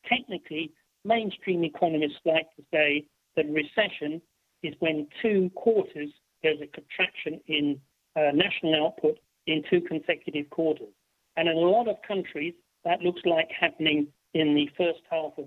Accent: British